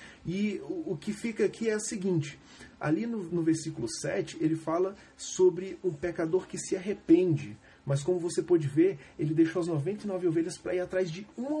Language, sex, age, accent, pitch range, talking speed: Portuguese, male, 30-49, Brazilian, 155-195 Hz, 190 wpm